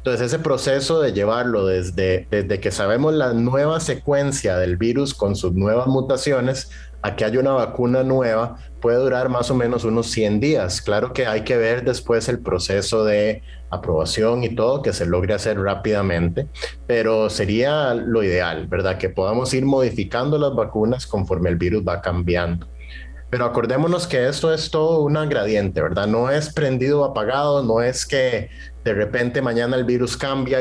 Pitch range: 100-135 Hz